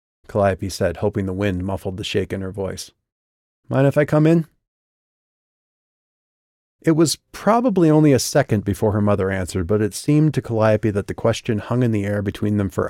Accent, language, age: American, English, 30-49